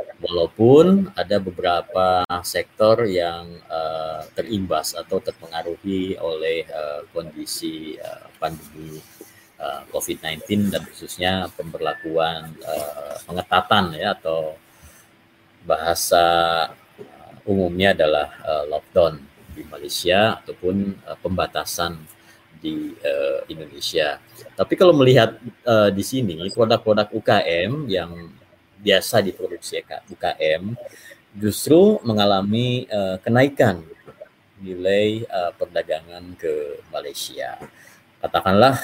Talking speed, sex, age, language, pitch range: 90 wpm, male, 30-49, Malay, 85-125 Hz